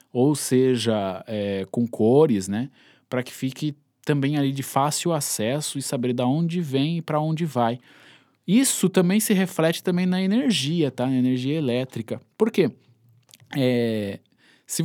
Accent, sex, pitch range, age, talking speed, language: Brazilian, male, 120-155 Hz, 20-39, 145 wpm, Portuguese